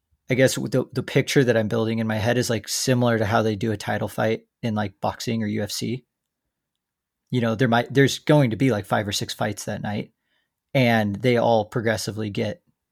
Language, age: English, 40-59